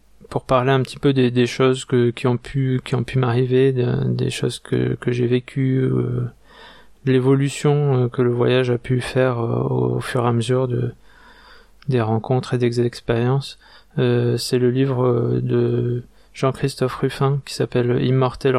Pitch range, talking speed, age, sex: 120-130 Hz, 180 wpm, 20-39, male